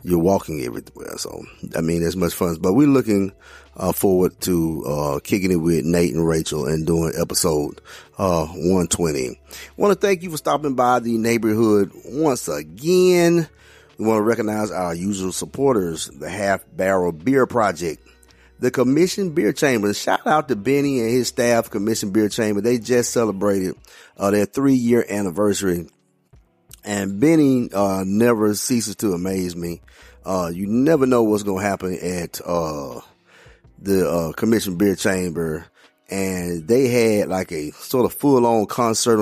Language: English